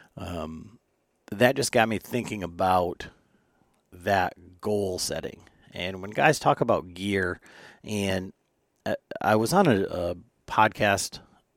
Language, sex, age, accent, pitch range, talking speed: English, male, 40-59, American, 90-105 Hz, 125 wpm